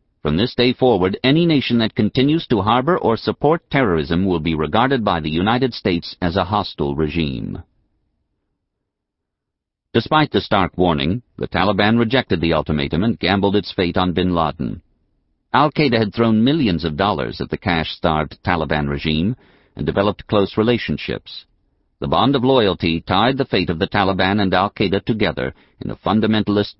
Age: 50-69